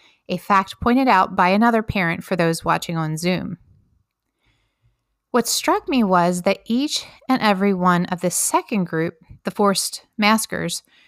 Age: 30-49